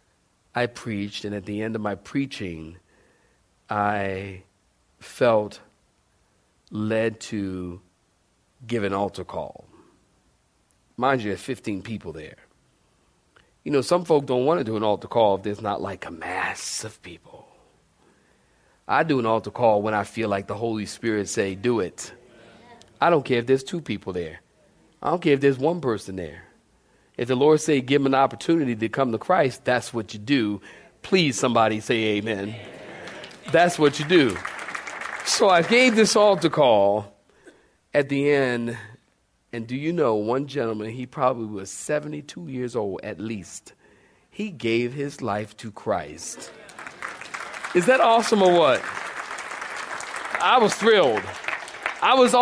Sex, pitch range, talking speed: male, 105-155 Hz, 155 wpm